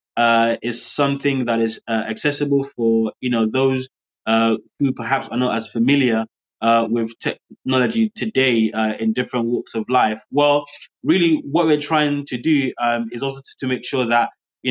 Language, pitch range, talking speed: English, 120-145 Hz, 180 wpm